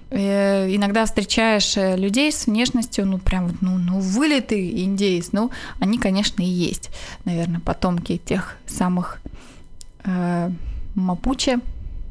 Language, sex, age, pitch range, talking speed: Russian, female, 20-39, 190-245 Hz, 110 wpm